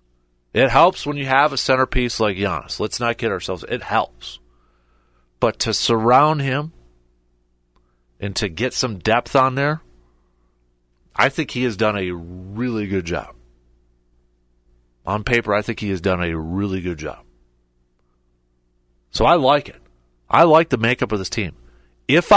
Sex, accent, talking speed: male, American, 155 wpm